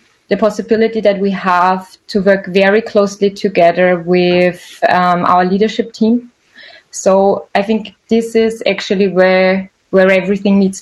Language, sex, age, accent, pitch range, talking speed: English, female, 20-39, German, 185-210 Hz, 140 wpm